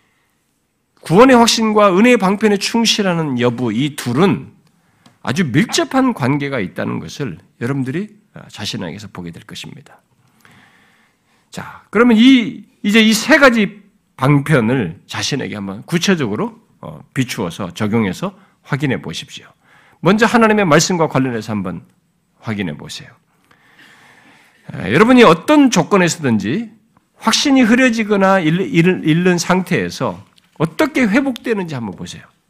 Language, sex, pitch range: Korean, male, 150-235 Hz